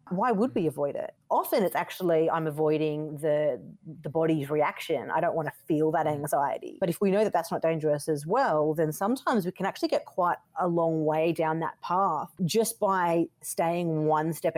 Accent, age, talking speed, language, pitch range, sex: Australian, 30-49, 200 wpm, English, 160-195 Hz, female